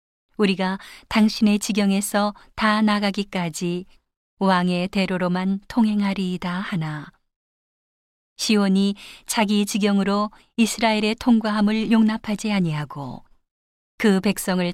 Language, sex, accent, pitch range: Korean, female, native, 180-210 Hz